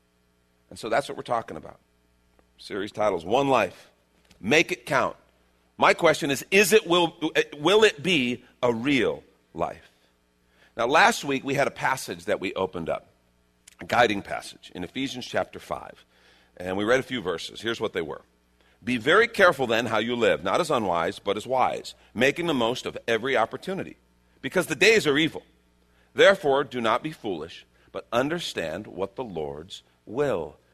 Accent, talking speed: American, 175 wpm